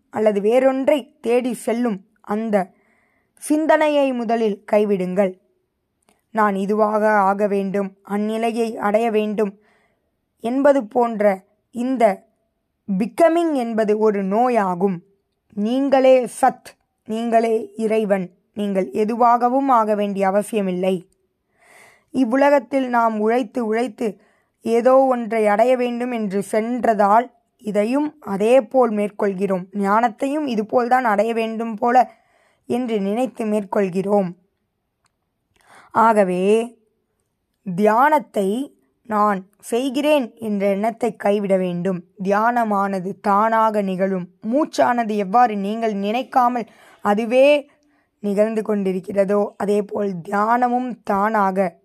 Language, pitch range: Tamil, 200-240 Hz